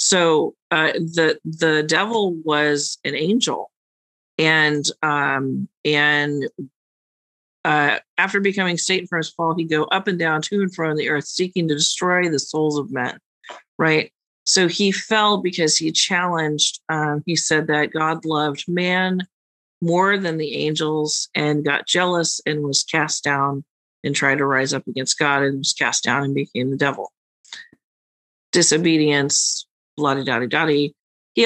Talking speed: 155 wpm